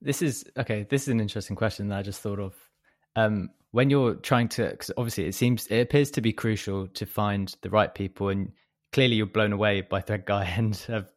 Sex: male